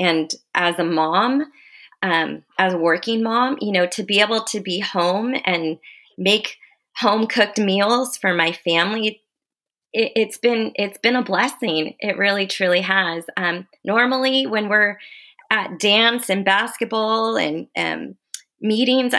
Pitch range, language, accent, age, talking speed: 180-240 Hz, English, American, 20-39, 145 wpm